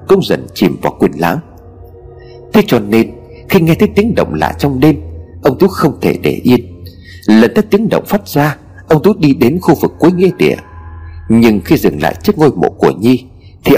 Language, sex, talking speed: Vietnamese, male, 210 wpm